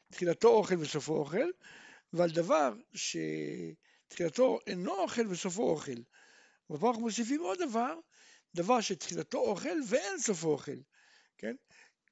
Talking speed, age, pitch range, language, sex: 110 wpm, 60-79, 175-255 Hz, Hebrew, male